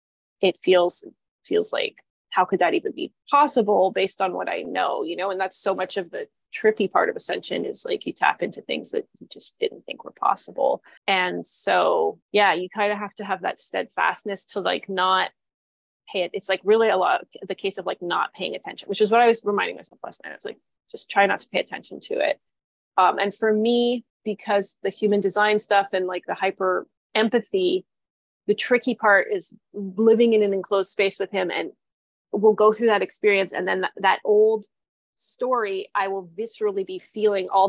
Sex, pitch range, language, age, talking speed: female, 195-250 Hz, English, 20-39, 210 wpm